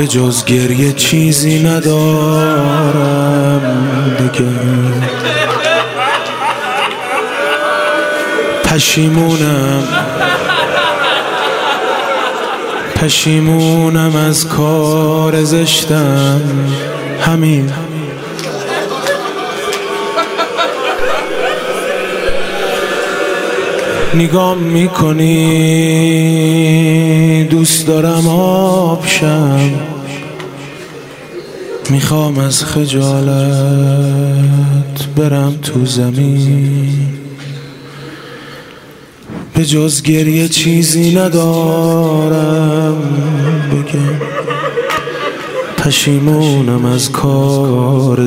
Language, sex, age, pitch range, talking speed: Persian, male, 20-39, 140-165 Hz, 35 wpm